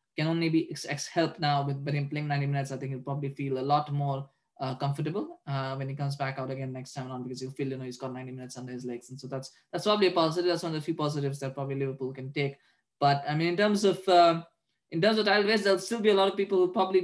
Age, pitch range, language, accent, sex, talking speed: 20-39, 140-170 Hz, English, Indian, male, 290 wpm